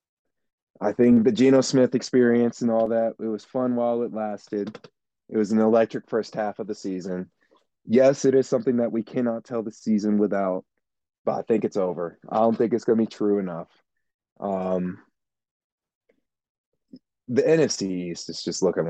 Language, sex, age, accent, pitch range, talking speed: English, male, 30-49, American, 95-125 Hz, 180 wpm